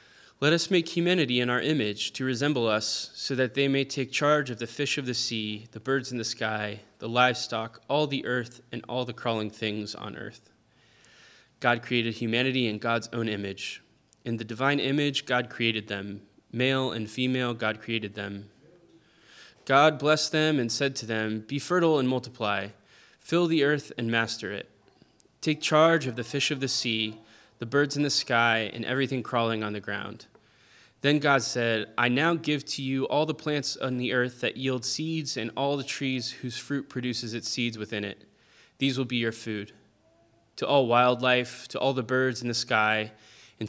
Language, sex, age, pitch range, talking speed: English, male, 20-39, 110-135 Hz, 190 wpm